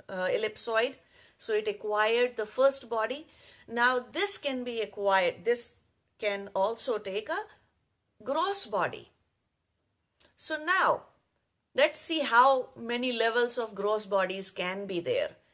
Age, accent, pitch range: 50-69, Indian, 170-275 Hz